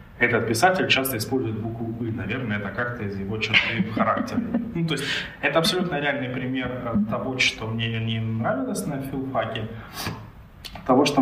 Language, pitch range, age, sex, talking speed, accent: Ukrainian, 105-125 Hz, 20-39, male, 155 wpm, native